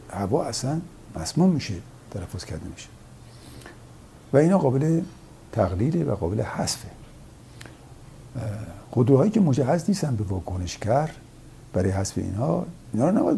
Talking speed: 125 wpm